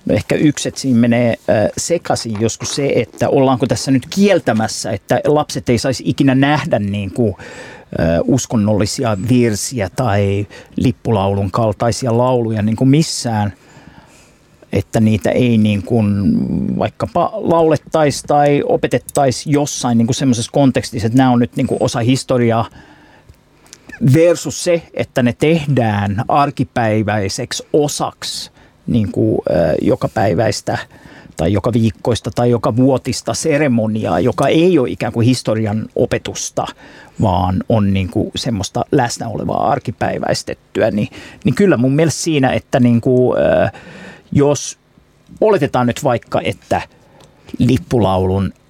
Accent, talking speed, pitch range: native, 100 wpm, 110-135 Hz